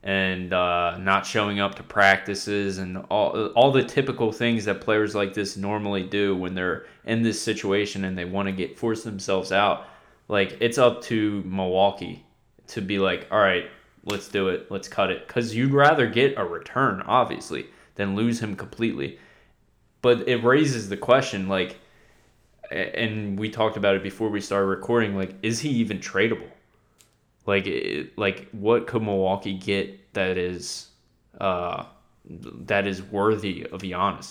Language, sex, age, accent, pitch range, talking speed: English, male, 20-39, American, 95-110 Hz, 165 wpm